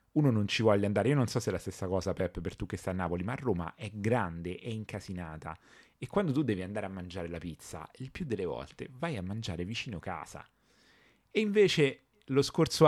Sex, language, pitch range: male, Italian, 95-115 Hz